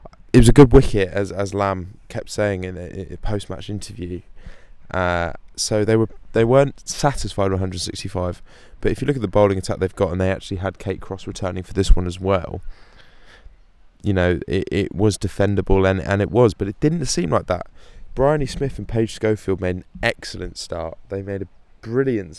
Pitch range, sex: 95-115 Hz, male